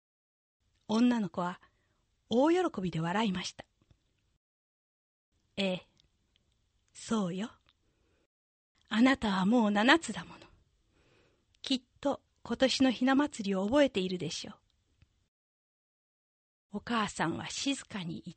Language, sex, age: Japanese, female, 40-59